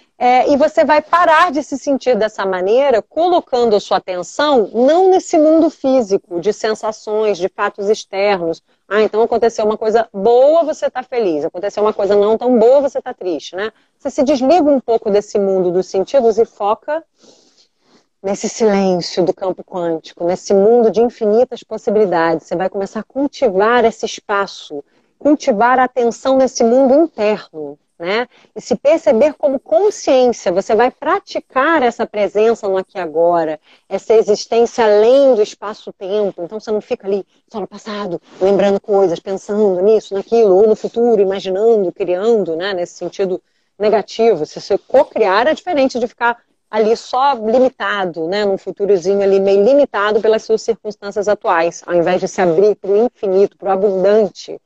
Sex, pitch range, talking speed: female, 195-250 Hz, 160 wpm